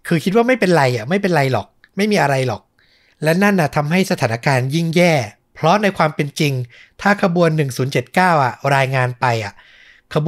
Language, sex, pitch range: Thai, male, 130-170 Hz